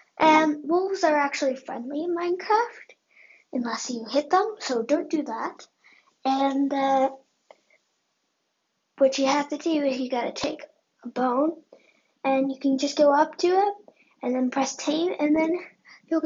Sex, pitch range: female, 270-335 Hz